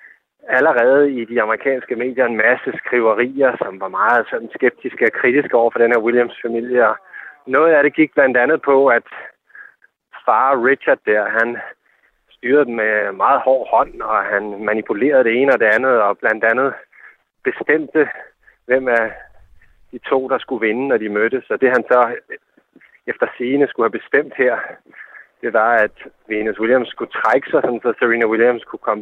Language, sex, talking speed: Danish, male, 170 wpm